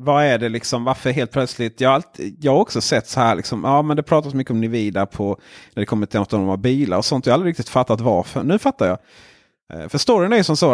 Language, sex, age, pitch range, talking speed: Swedish, male, 30-49, 110-155 Hz, 270 wpm